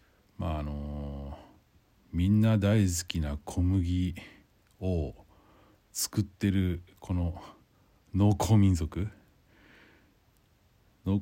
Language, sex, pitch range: Japanese, male, 80-100 Hz